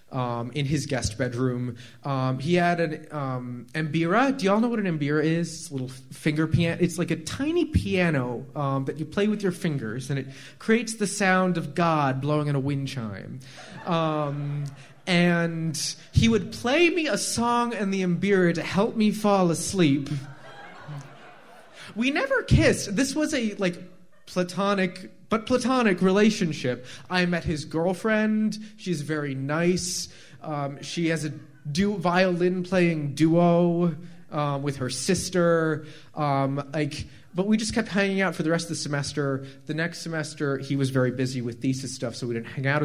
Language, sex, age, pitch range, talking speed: English, male, 20-39, 130-180 Hz, 170 wpm